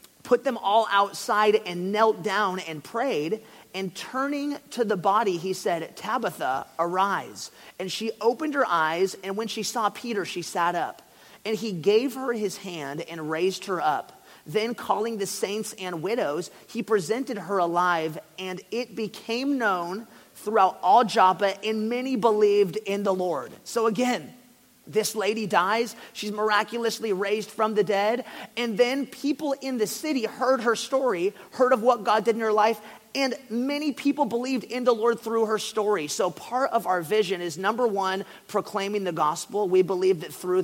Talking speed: 175 wpm